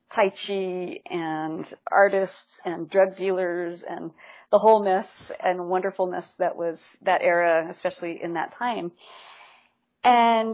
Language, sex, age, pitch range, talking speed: English, female, 30-49, 180-205 Hz, 125 wpm